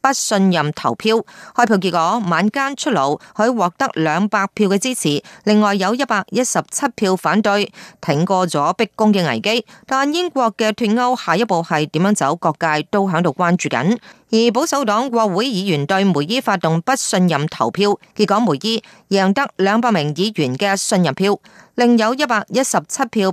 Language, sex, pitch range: Japanese, female, 175-225 Hz